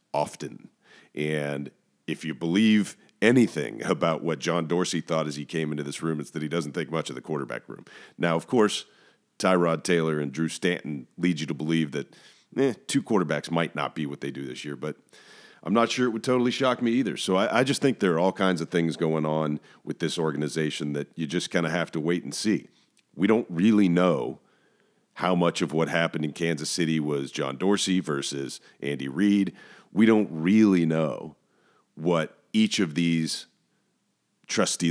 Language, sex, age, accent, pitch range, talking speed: English, male, 40-59, American, 75-90 Hz, 195 wpm